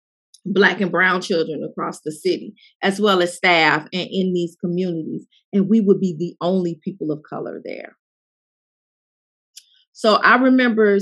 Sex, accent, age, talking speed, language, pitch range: female, American, 40-59, 150 wpm, English, 170-205 Hz